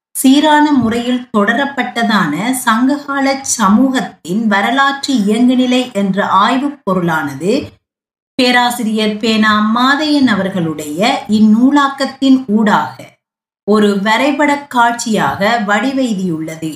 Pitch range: 195-245 Hz